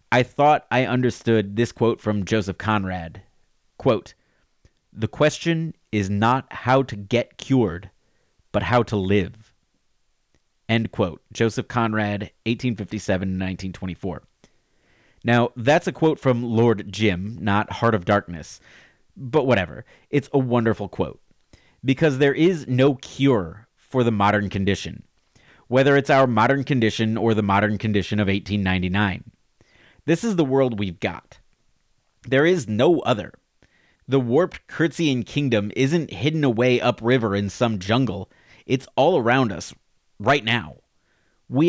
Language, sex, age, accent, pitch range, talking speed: English, male, 30-49, American, 100-135 Hz, 130 wpm